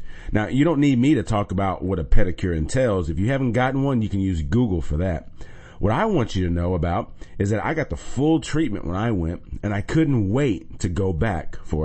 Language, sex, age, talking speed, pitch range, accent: English, male, 40-59, 245 wpm, 85-120 Hz, American